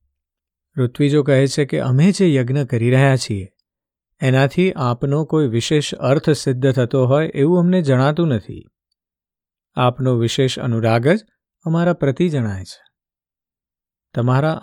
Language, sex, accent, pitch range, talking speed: Gujarati, male, native, 115-140 Hz, 75 wpm